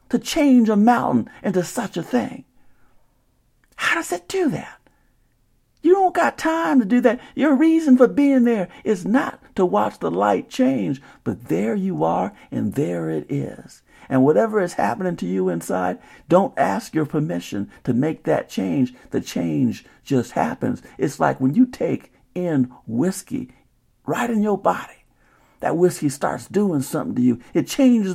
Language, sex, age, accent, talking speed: English, male, 50-69, American, 170 wpm